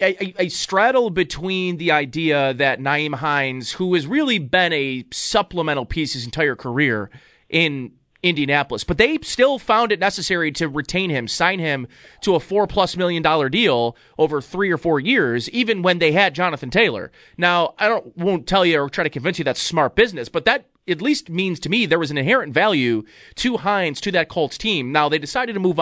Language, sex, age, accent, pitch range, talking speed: English, male, 30-49, American, 150-195 Hz, 205 wpm